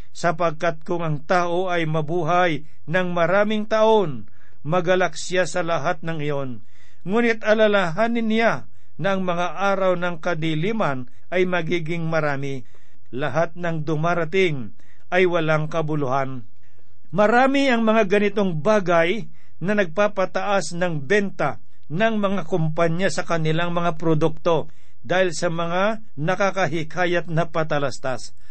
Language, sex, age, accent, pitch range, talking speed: Filipino, male, 50-69, native, 150-195 Hz, 115 wpm